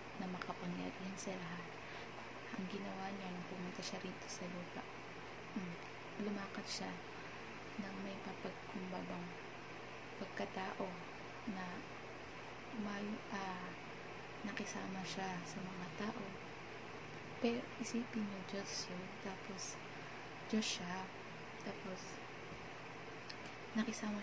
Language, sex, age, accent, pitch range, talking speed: Filipino, female, 20-39, native, 190-215 Hz, 85 wpm